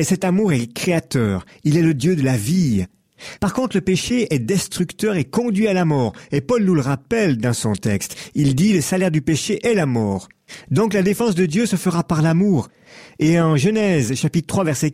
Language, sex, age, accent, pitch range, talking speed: French, male, 50-69, French, 130-190 Hz, 220 wpm